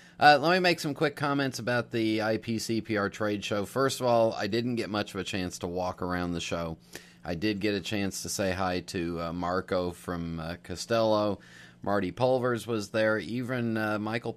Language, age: English, 30-49